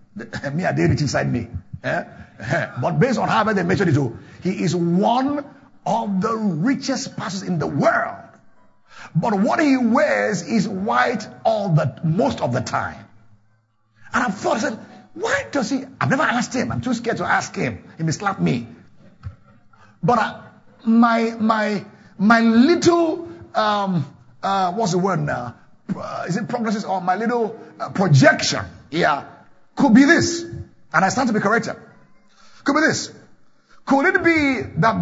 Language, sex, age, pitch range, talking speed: English, male, 50-69, 180-255 Hz, 165 wpm